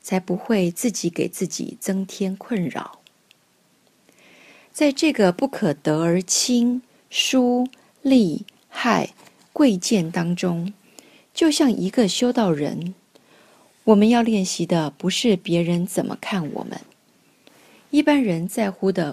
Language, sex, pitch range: Chinese, female, 175-235 Hz